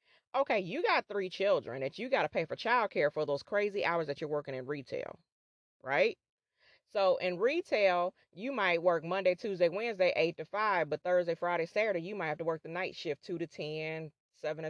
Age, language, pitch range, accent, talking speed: 30-49, English, 160-205 Hz, American, 210 wpm